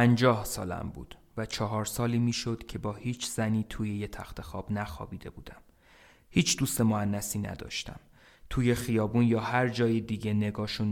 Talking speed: 150 wpm